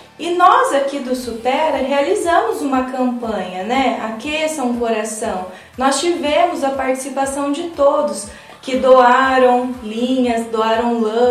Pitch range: 240-310 Hz